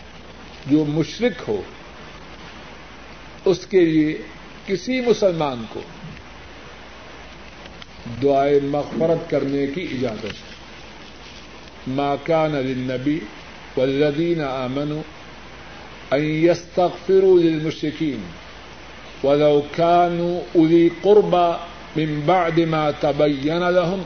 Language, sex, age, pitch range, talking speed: Urdu, male, 50-69, 150-190 Hz, 70 wpm